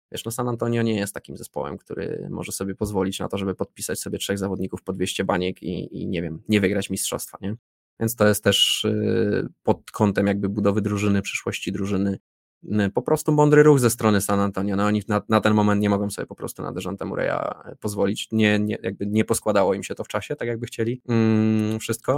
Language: Polish